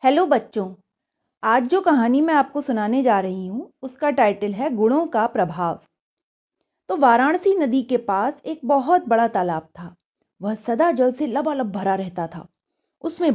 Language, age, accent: Hindi, 30-49, native